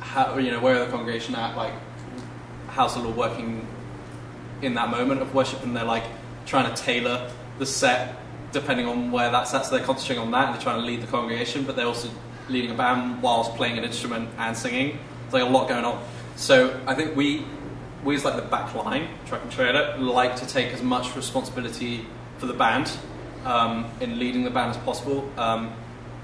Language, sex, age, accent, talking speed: English, male, 20-39, British, 210 wpm